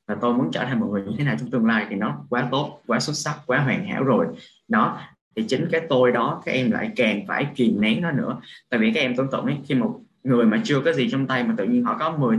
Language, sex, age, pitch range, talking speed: Vietnamese, male, 20-39, 130-200 Hz, 295 wpm